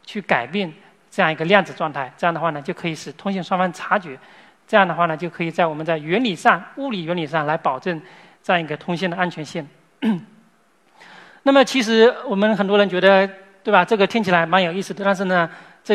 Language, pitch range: Chinese, 165-205 Hz